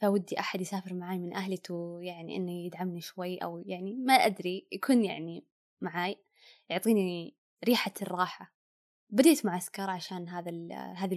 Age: 20-39